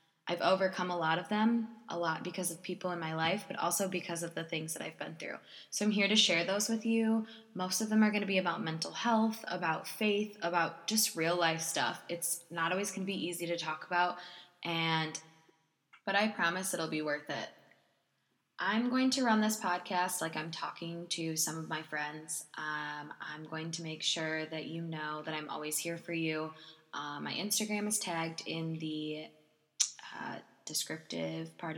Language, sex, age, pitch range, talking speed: English, female, 20-39, 160-195 Hz, 200 wpm